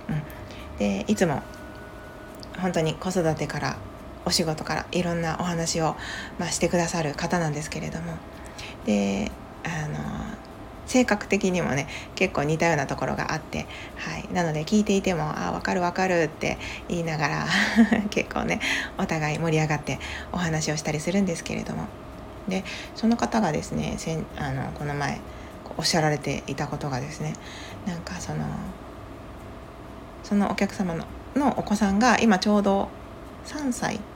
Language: Japanese